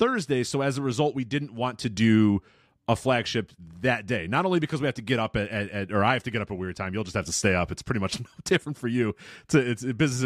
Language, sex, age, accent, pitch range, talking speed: English, male, 30-49, American, 95-135 Hz, 285 wpm